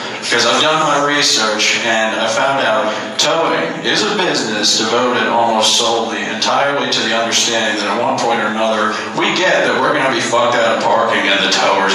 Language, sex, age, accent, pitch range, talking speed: English, male, 40-59, American, 105-115 Hz, 200 wpm